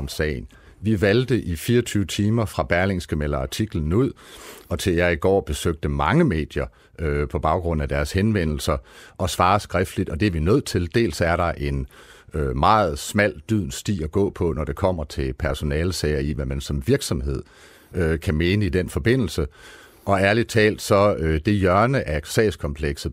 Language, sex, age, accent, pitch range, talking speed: Danish, male, 60-79, native, 75-100 Hz, 180 wpm